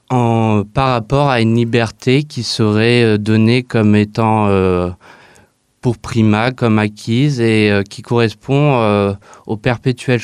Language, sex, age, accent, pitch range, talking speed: French, male, 20-39, French, 100-125 Hz, 135 wpm